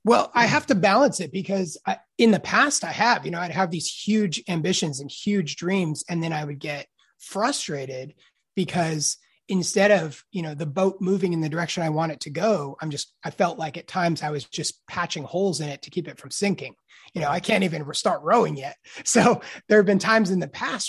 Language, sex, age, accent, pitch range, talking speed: English, male, 30-49, American, 150-190 Hz, 225 wpm